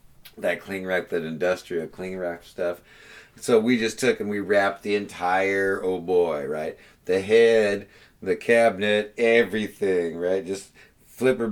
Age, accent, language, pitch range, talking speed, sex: 50-69, American, English, 90-110 Hz, 135 wpm, male